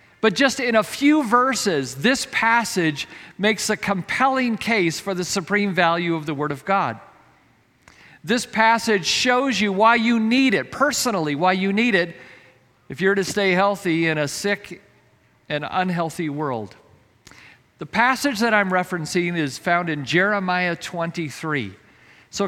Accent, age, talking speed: American, 50-69, 150 wpm